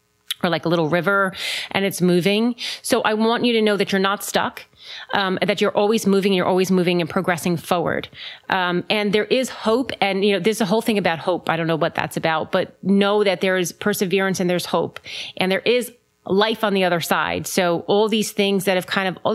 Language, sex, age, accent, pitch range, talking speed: English, female, 30-49, American, 175-205 Hz, 235 wpm